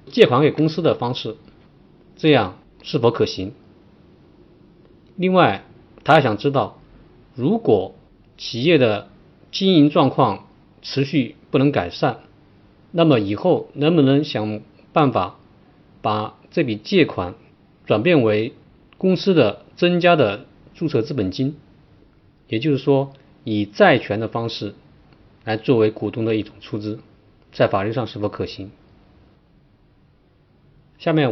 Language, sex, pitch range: Chinese, male, 105-150 Hz